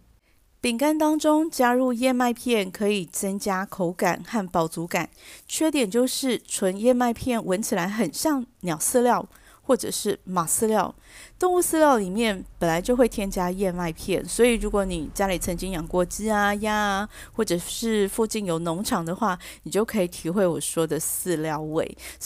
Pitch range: 180-230 Hz